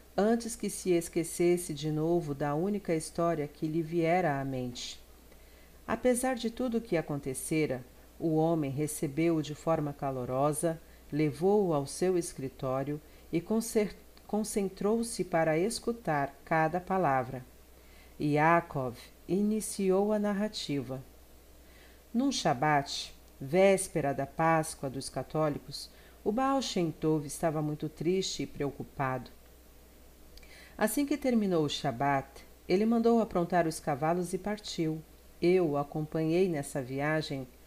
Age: 50-69